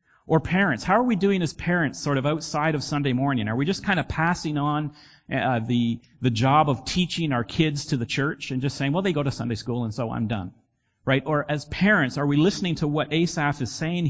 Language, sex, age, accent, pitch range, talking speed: English, male, 40-59, American, 135-170 Hz, 245 wpm